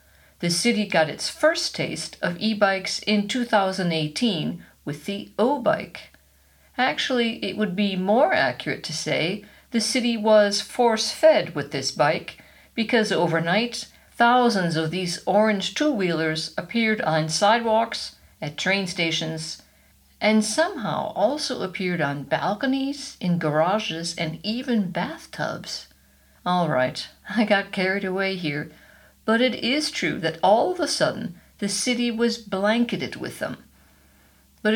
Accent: American